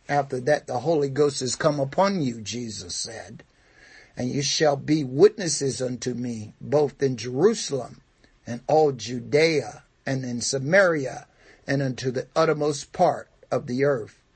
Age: 60-79